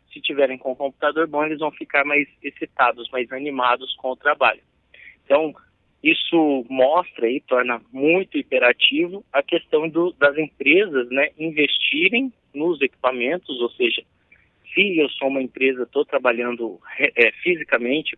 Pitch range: 130-175 Hz